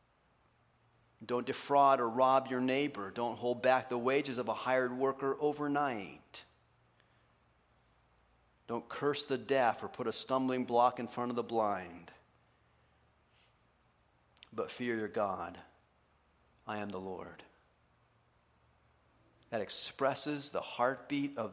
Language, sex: English, male